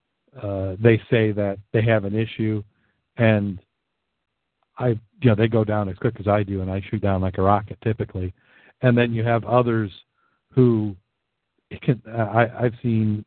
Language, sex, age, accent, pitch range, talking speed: English, male, 50-69, American, 100-120 Hz, 170 wpm